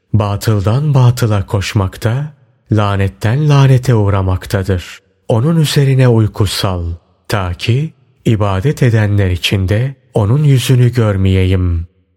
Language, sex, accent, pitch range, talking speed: Turkish, male, native, 95-125 Hz, 85 wpm